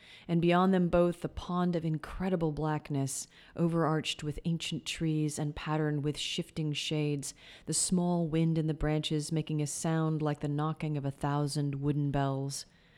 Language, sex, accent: English, female, American